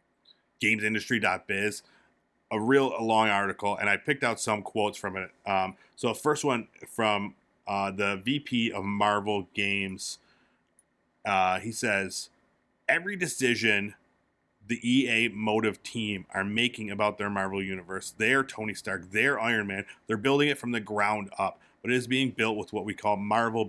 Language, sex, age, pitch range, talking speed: English, male, 30-49, 100-120 Hz, 160 wpm